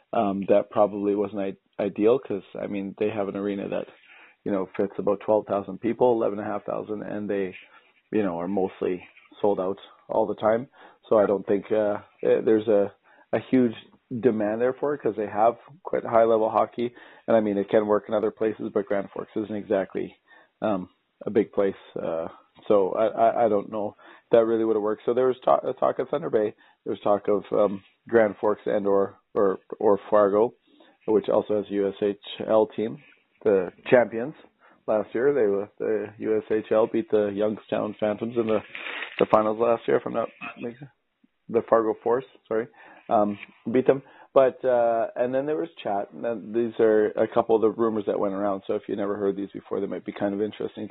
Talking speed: 200 wpm